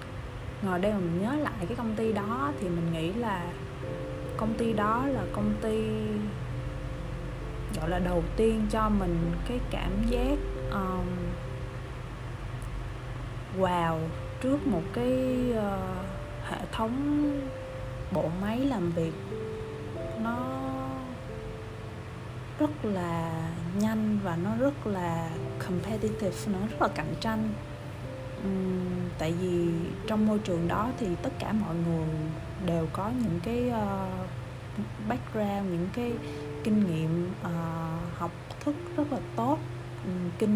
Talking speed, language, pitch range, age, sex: 120 wpm, Vietnamese, 125-195 Hz, 20-39, female